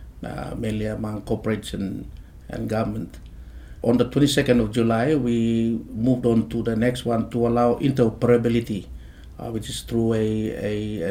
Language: English